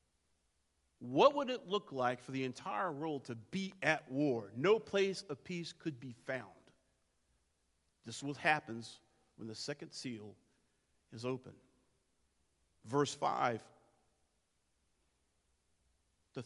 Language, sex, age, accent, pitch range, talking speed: English, male, 50-69, American, 125-165 Hz, 120 wpm